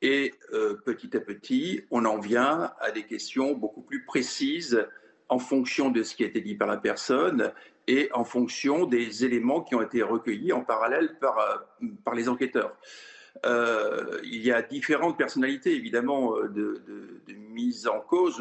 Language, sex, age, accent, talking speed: French, male, 50-69, French, 175 wpm